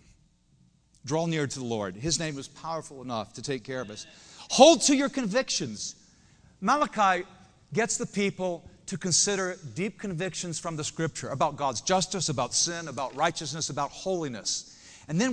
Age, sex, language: 50-69, male, English